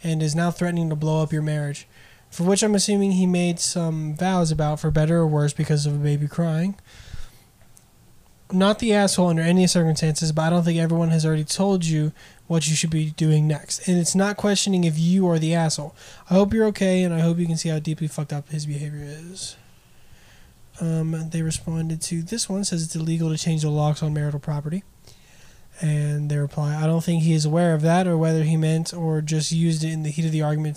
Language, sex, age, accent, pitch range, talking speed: English, male, 20-39, American, 155-175 Hz, 225 wpm